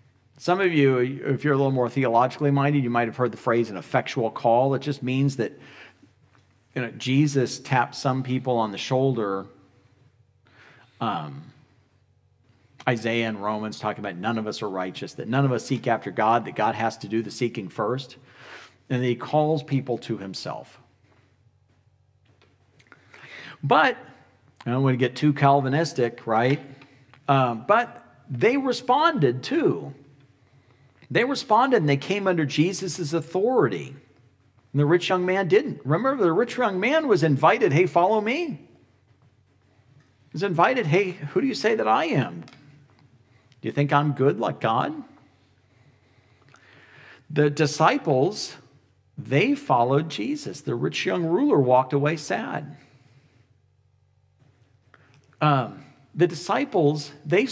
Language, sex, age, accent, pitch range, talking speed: English, male, 40-59, American, 110-145 Hz, 140 wpm